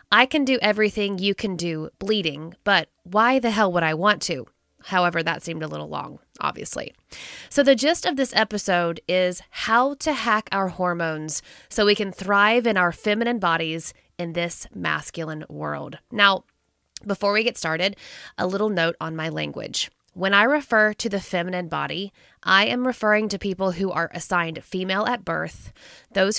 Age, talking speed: 20-39, 175 wpm